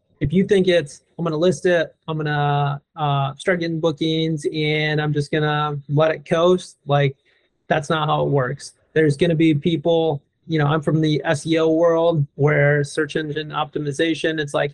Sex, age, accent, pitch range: male, 30-49, American, 145-165 Hz